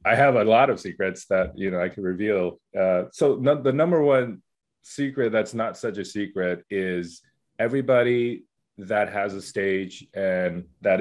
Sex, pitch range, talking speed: male, 90-115 Hz, 175 wpm